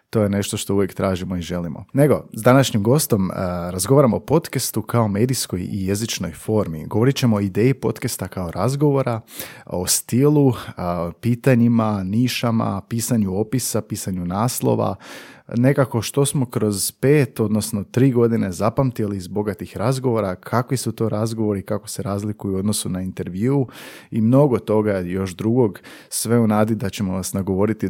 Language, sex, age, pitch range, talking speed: Croatian, male, 30-49, 100-130 Hz, 155 wpm